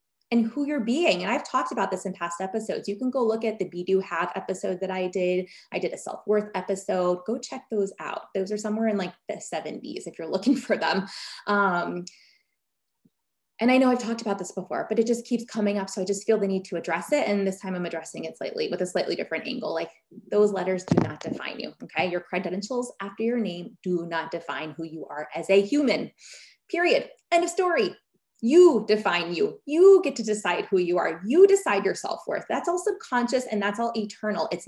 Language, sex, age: English, female, 20-39